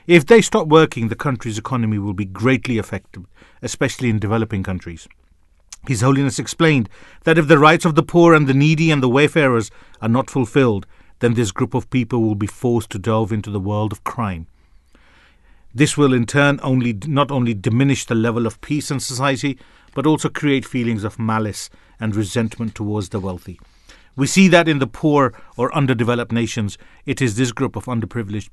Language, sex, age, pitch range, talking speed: English, male, 40-59, 105-135 Hz, 185 wpm